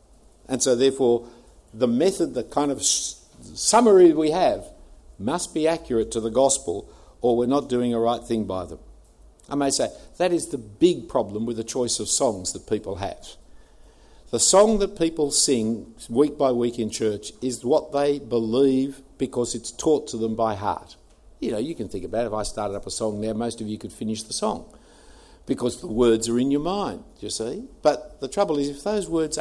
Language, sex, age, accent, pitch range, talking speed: English, male, 60-79, Australian, 110-155 Hz, 205 wpm